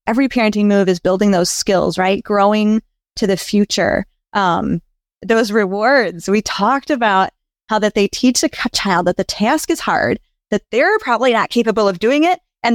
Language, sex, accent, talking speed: English, female, American, 180 wpm